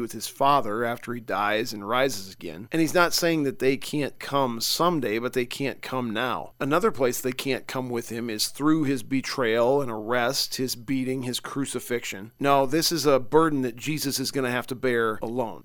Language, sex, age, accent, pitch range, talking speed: English, male, 40-59, American, 125-145 Hz, 205 wpm